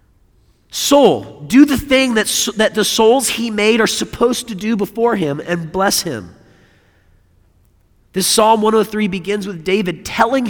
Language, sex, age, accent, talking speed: English, male, 40-59, American, 150 wpm